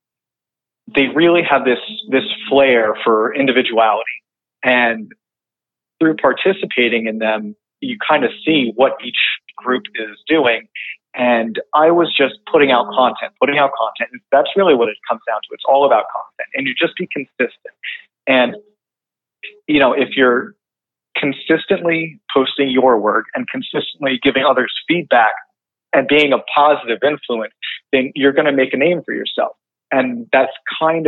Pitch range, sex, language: 120-160 Hz, male, English